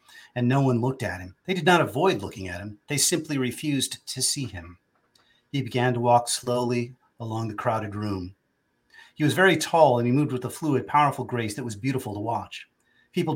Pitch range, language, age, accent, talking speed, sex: 110-135 Hz, English, 40-59, American, 205 wpm, male